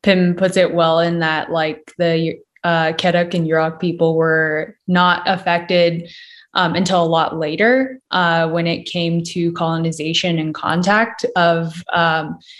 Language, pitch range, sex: English, 160-180 Hz, female